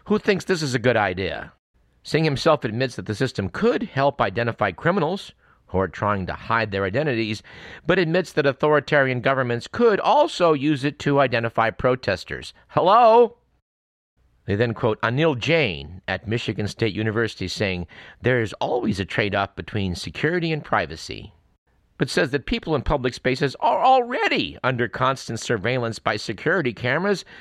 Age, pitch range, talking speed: 50-69, 95-145 Hz, 155 wpm